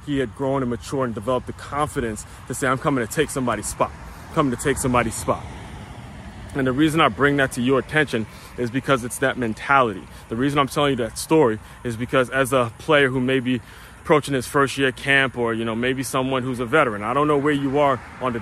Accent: American